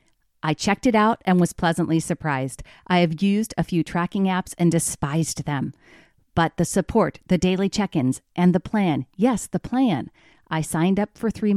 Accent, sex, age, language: American, female, 40-59, English